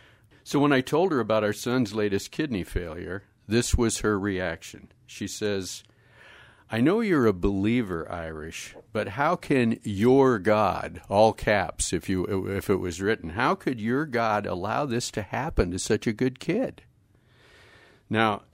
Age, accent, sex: 50-69, American, male